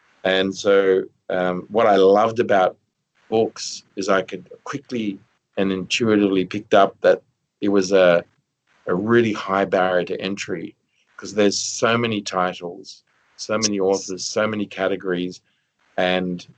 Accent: Australian